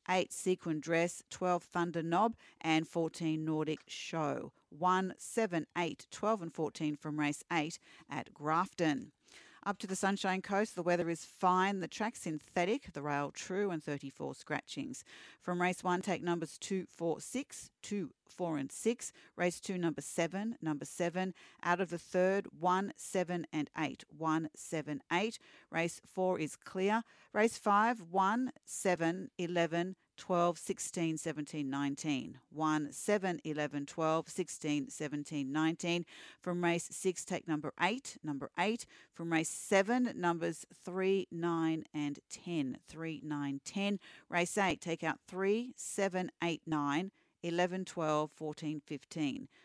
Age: 40-59